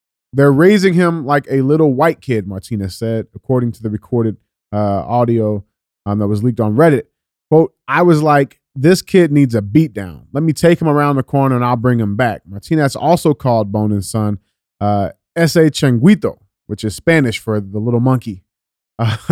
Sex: male